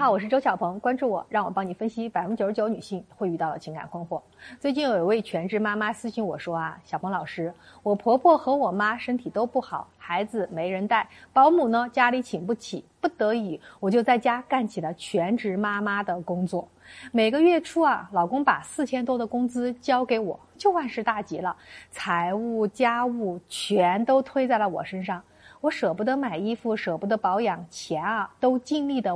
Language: Chinese